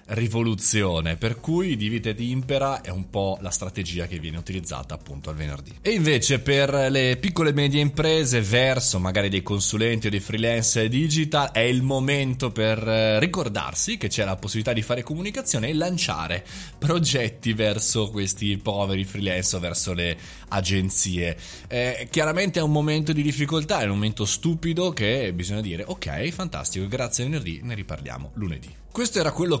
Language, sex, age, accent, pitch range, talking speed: Italian, male, 20-39, native, 95-130 Hz, 165 wpm